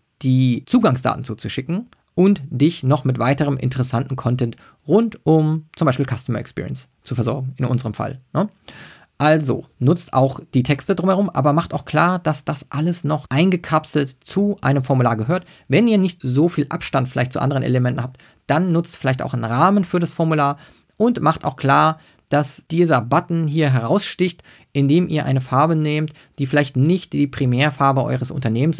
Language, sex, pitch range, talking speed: German, male, 130-165 Hz, 170 wpm